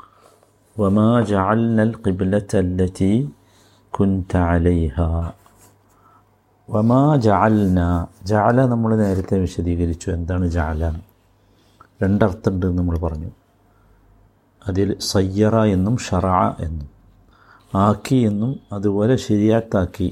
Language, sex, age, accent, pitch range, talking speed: Malayalam, male, 50-69, native, 90-115 Hz, 80 wpm